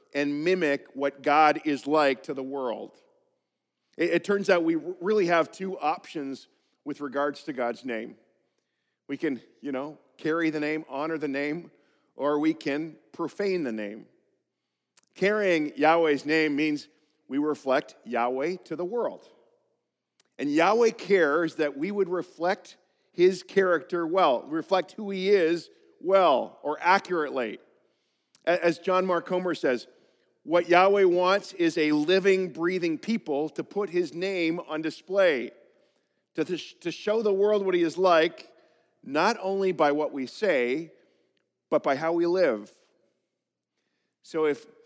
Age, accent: 50-69, American